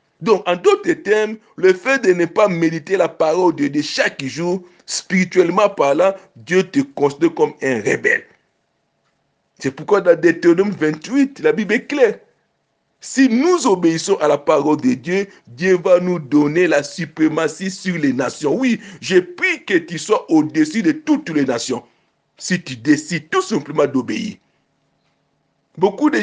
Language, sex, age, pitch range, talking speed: French, male, 60-79, 170-270 Hz, 160 wpm